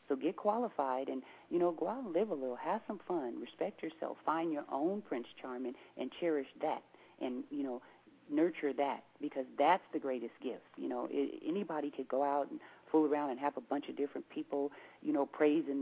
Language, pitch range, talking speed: English, 130-155 Hz, 205 wpm